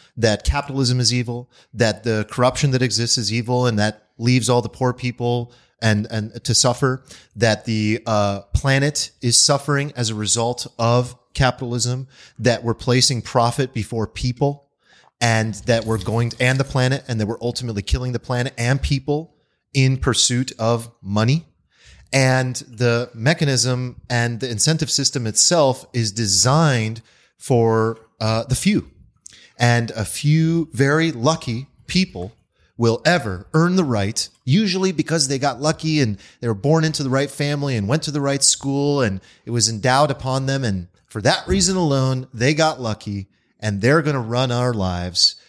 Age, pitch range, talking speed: 30-49, 115-145 Hz, 165 wpm